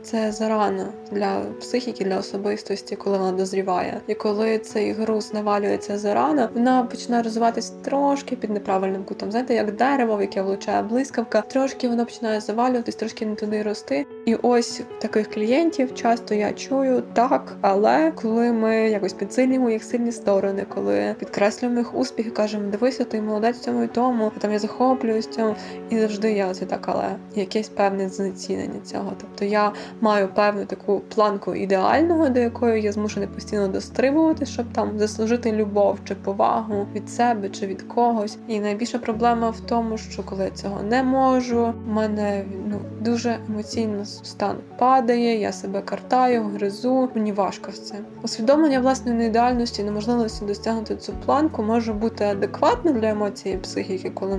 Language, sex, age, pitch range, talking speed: Ukrainian, female, 20-39, 200-235 Hz, 160 wpm